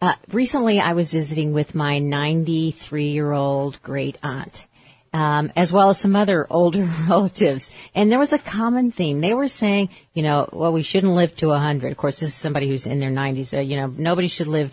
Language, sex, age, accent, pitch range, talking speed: English, female, 40-59, American, 150-195 Hz, 200 wpm